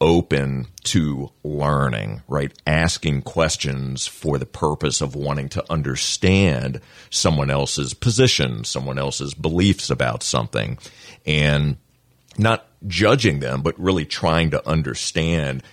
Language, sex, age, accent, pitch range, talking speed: English, male, 40-59, American, 70-90 Hz, 115 wpm